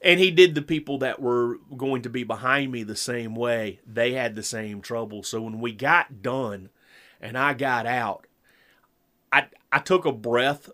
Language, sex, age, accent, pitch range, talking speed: English, male, 30-49, American, 120-145 Hz, 190 wpm